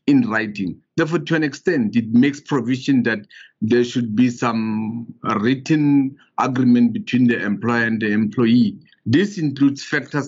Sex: male